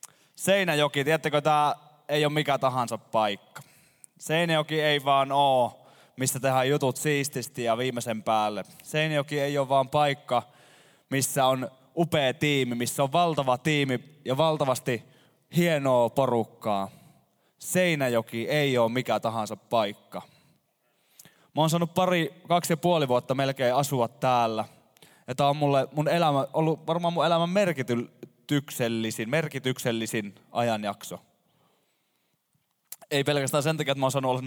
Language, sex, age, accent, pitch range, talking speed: Finnish, male, 20-39, native, 125-155 Hz, 125 wpm